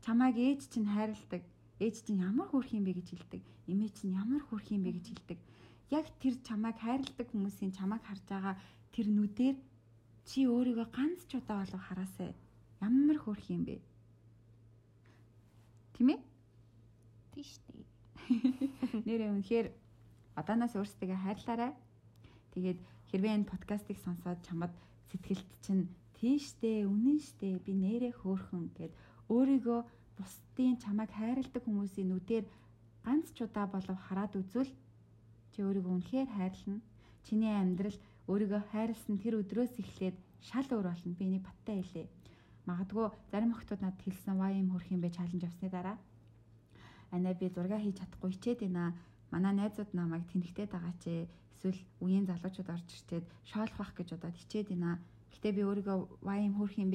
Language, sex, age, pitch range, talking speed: English, female, 30-49, 175-220 Hz, 85 wpm